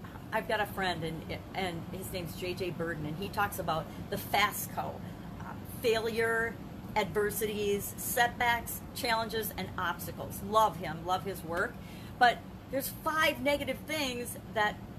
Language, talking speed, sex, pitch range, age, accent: English, 135 wpm, female, 185-245 Hz, 40-59, American